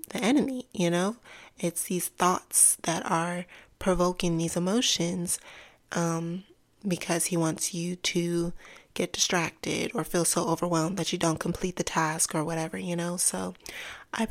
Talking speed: 150 wpm